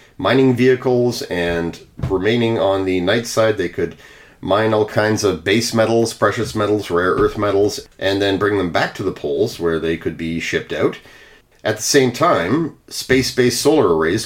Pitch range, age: 85-130 Hz, 40-59